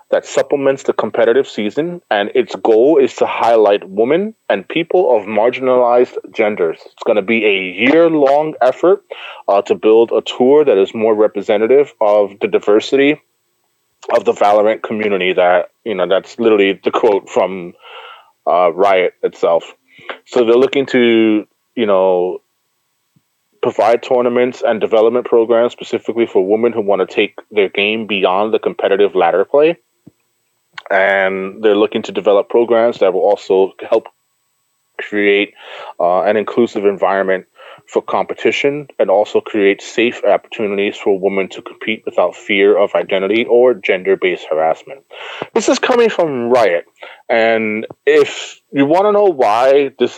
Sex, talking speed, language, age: male, 145 wpm, English, 20-39